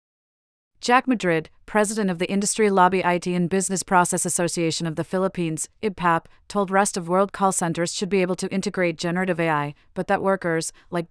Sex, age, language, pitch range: female, 30-49, English, 170-195 Hz